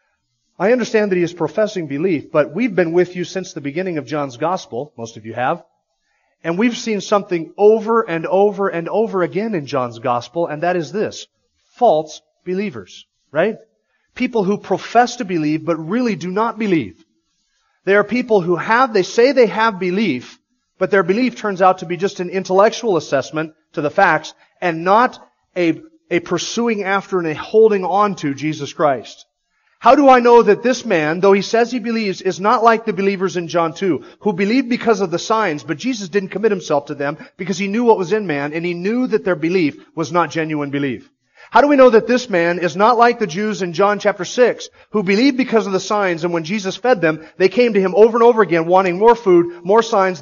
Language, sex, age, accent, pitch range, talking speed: English, male, 30-49, American, 170-220 Hz, 215 wpm